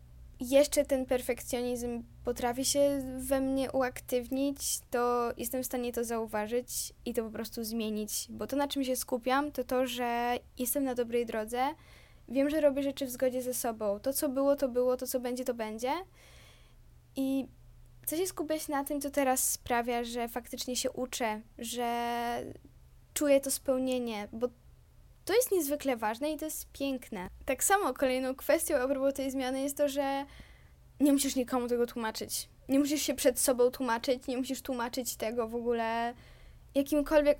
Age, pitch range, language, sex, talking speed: 10-29, 235-275 Hz, Polish, female, 165 wpm